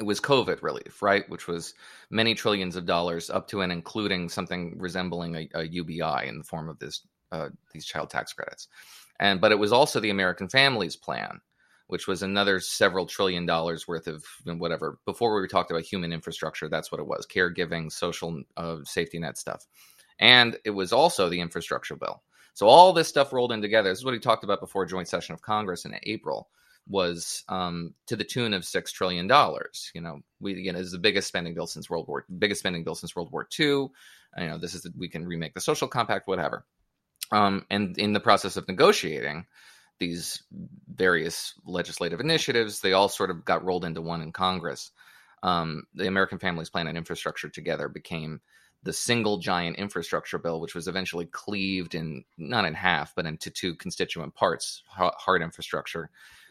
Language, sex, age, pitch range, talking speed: English, male, 30-49, 85-100 Hz, 190 wpm